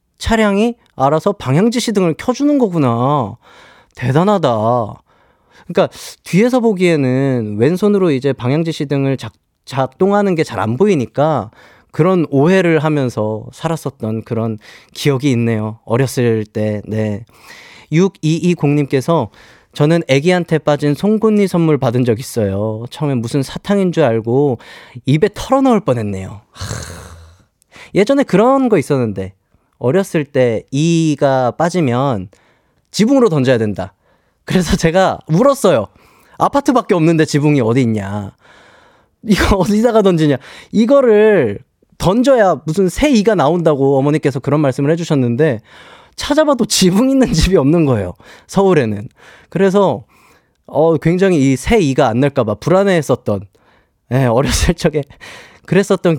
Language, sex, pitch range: Korean, male, 120-190 Hz